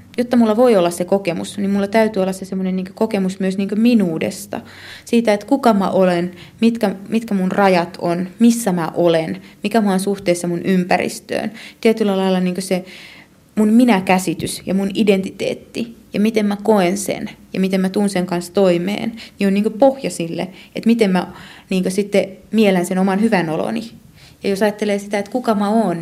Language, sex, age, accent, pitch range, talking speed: Finnish, female, 30-49, native, 175-210 Hz, 170 wpm